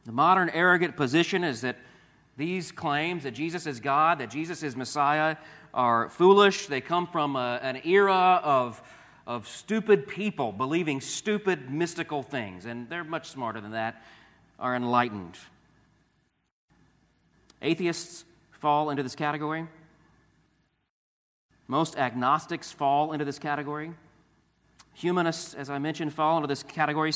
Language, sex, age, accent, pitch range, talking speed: English, male, 40-59, American, 125-160 Hz, 130 wpm